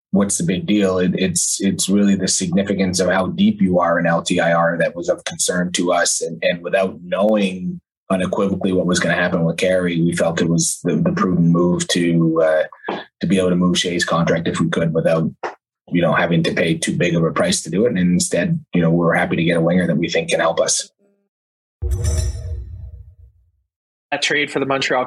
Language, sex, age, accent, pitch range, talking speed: English, male, 20-39, American, 100-155 Hz, 215 wpm